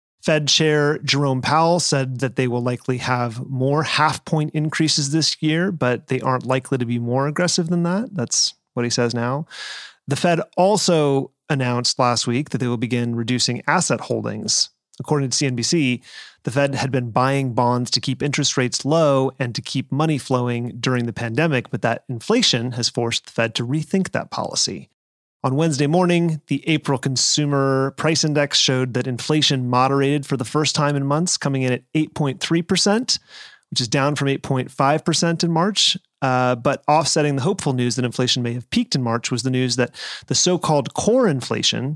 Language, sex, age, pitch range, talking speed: English, male, 30-49, 125-155 Hz, 180 wpm